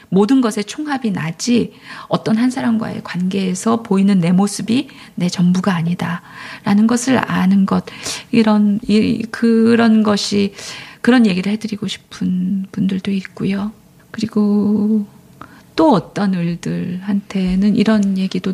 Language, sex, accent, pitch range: Korean, female, native, 195-230 Hz